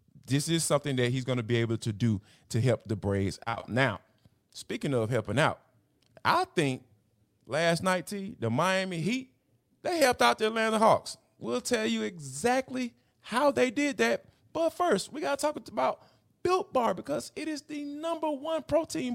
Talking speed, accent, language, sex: 180 wpm, American, English, male